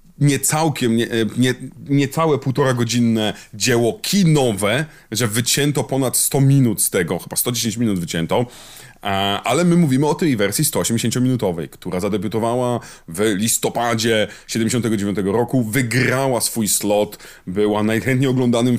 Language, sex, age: Polish, male, 30-49